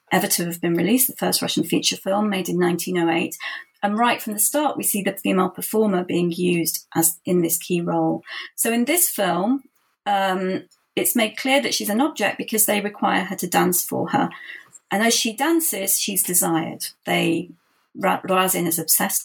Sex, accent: female, British